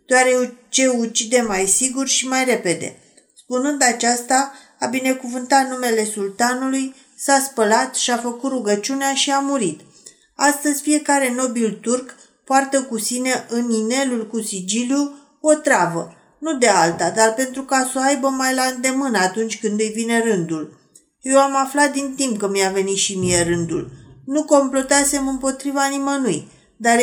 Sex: female